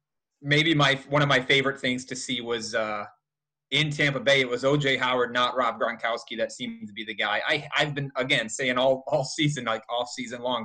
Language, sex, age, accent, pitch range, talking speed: English, male, 20-39, American, 125-150 Hz, 220 wpm